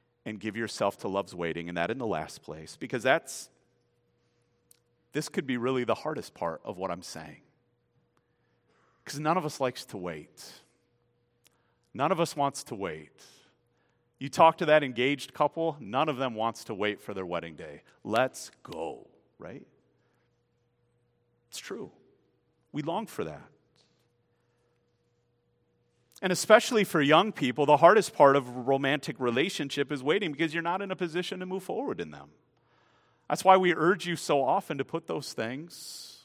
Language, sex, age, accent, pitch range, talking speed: English, male, 40-59, American, 120-170 Hz, 165 wpm